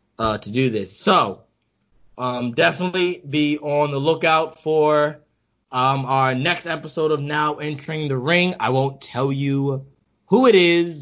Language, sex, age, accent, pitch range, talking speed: English, male, 20-39, American, 125-165 Hz, 150 wpm